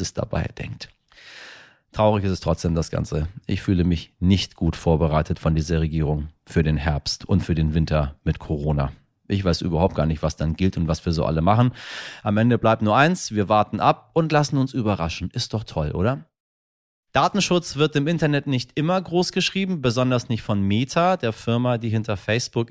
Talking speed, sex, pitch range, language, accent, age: 195 wpm, male, 100-145 Hz, German, German, 30-49